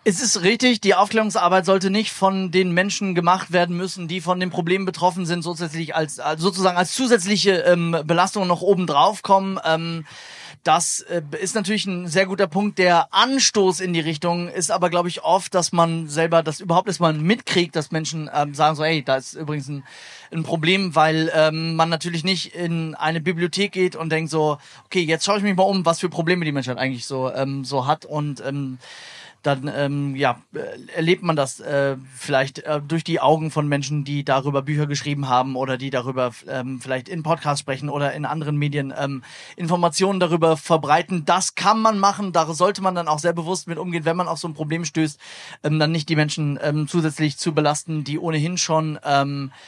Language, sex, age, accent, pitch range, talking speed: German, male, 30-49, German, 145-180 Hz, 205 wpm